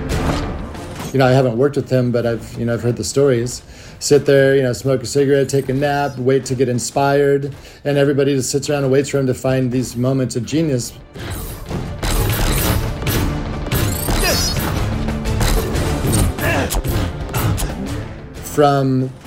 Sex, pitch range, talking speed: male, 115-135 Hz, 140 wpm